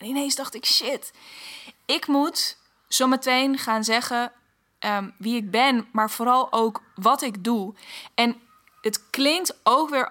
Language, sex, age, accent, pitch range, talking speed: Dutch, female, 20-39, Dutch, 205-255 Hz, 150 wpm